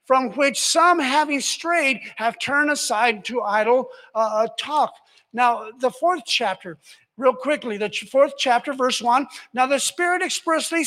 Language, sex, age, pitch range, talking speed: English, male, 50-69, 205-290 Hz, 150 wpm